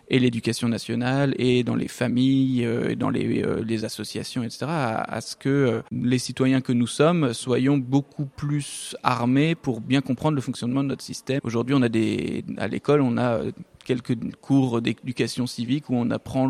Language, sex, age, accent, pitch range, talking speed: French, male, 20-39, French, 120-135 Hz, 180 wpm